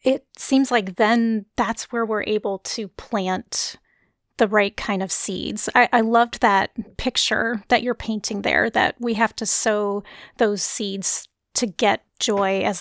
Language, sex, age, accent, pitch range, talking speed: English, female, 30-49, American, 210-240 Hz, 165 wpm